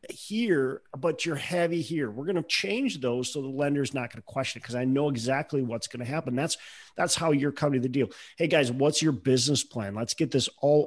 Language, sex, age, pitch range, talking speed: English, male, 40-59, 120-160 Hz, 245 wpm